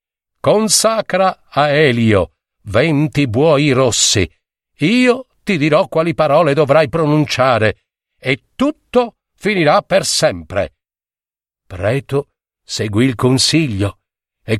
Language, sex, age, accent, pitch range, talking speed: Italian, male, 50-69, native, 110-160 Hz, 95 wpm